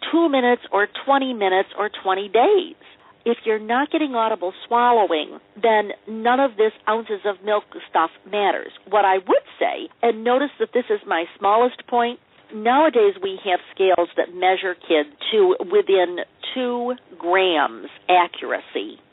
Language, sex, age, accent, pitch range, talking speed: English, female, 50-69, American, 180-265 Hz, 145 wpm